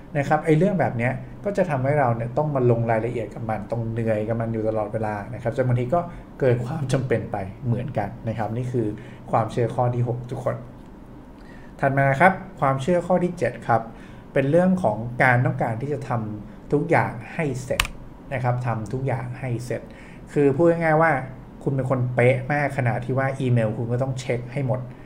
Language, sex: English, male